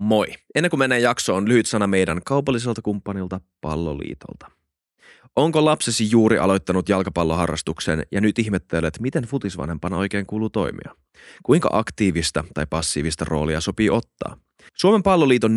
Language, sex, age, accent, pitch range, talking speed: Finnish, male, 20-39, native, 90-115 Hz, 125 wpm